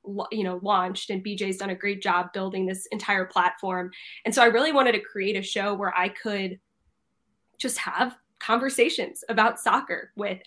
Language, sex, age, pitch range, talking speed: English, female, 10-29, 195-230 Hz, 180 wpm